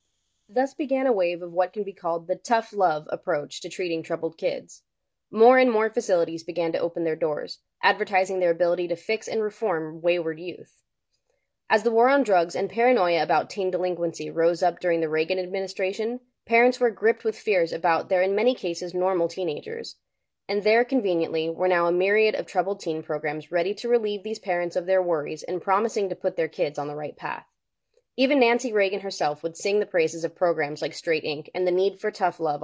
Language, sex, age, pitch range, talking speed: English, female, 20-39, 170-220 Hz, 200 wpm